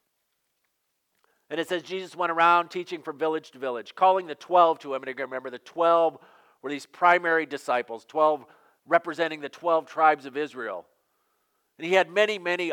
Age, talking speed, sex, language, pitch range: 50-69, 175 wpm, male, English, 145-195 Hz